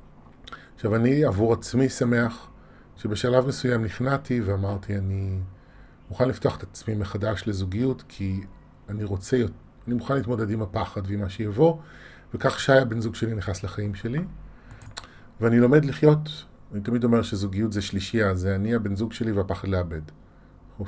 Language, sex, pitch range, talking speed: Hebrew, male, 95-120 Hz, 150 wpm